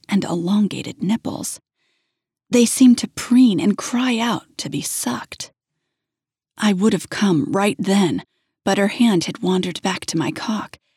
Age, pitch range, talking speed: 40-59, 170-215 Hz, 155 wpm